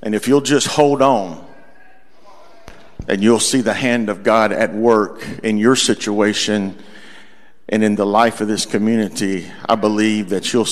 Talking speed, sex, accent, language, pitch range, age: 160 wpm, male, American, English, 110-150 Hz, 50-69